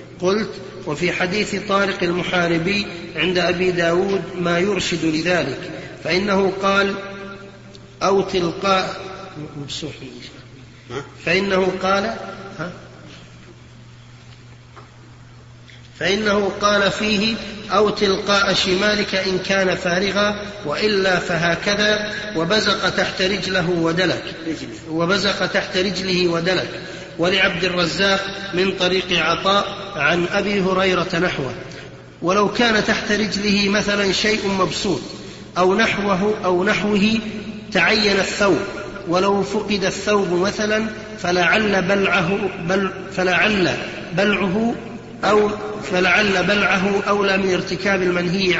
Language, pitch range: Arabic, 175-200 Hz